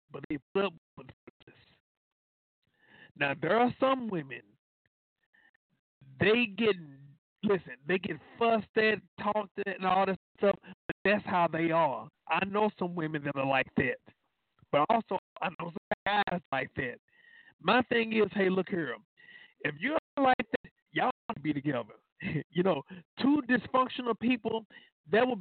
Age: 50-69